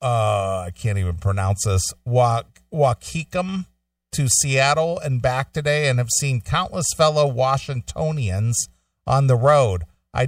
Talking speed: 135 wpm